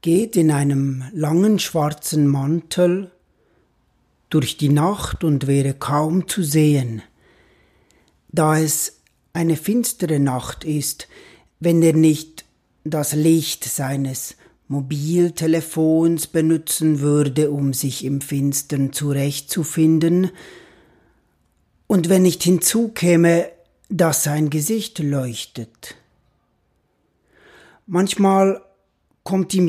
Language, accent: German, German